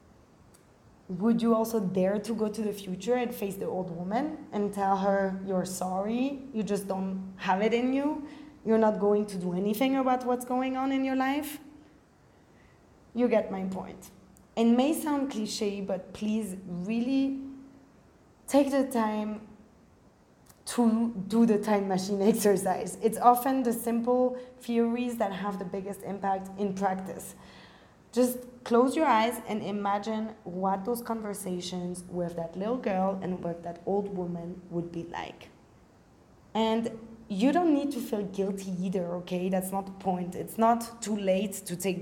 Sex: female